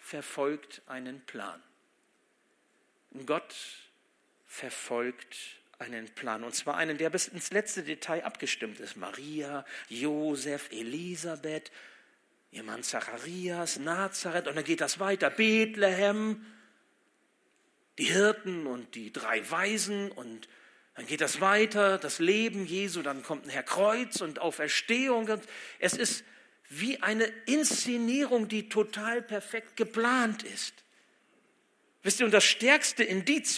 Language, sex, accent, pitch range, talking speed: German, male, German, 165-235 Hz, 120 wpm